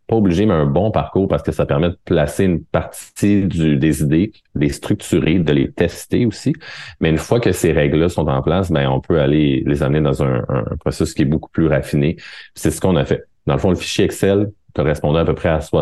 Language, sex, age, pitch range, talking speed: French, male, 30-49, 70-85 Hz, 245 wpm